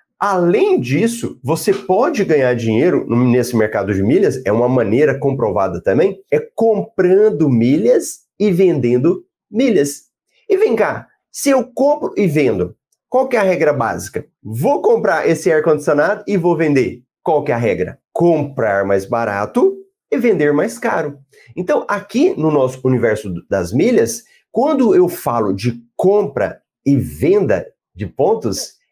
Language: Portuguese